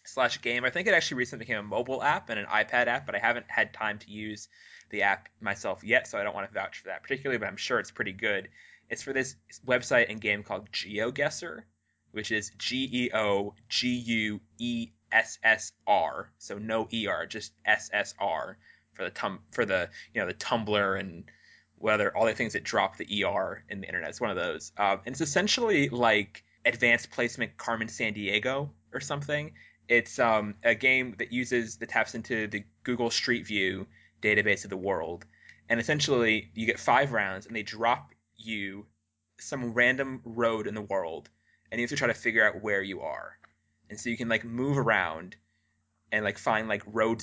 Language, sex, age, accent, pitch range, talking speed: English, male, 20-39, American, 105-120 Hz, 205 wpm